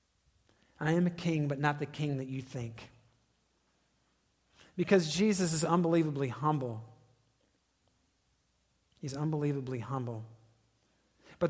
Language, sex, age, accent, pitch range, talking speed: English, male, 40-59, American, 130-175 Hz, 105 wpm